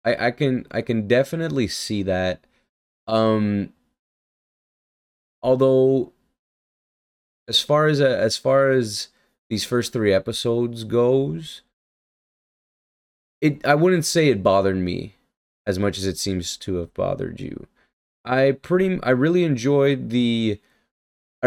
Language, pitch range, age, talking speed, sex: English, 95-125 Hz, 20-39, 125 wpm, male